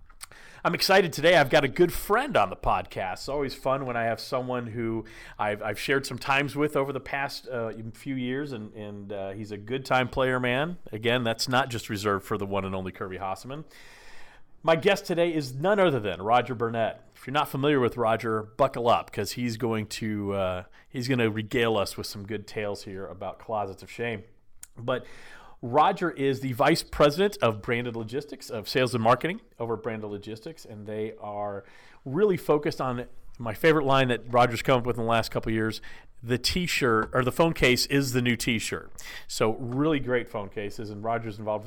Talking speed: 200 wpm